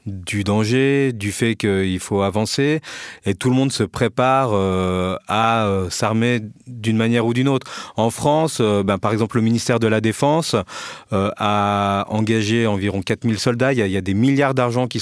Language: French